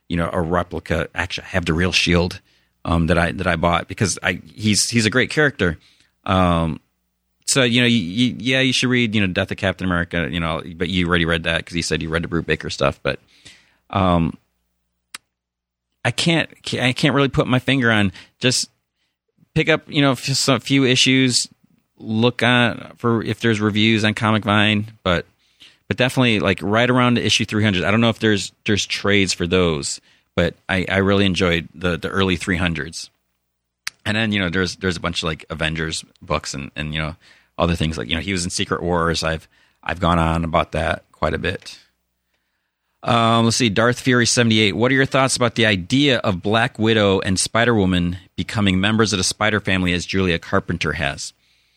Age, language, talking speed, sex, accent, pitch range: 30-49, English, 205 wpm, male, American, 85-115 Hz